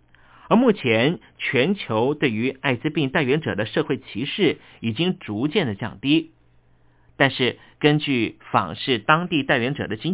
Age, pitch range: 50-69, 105-155 Hz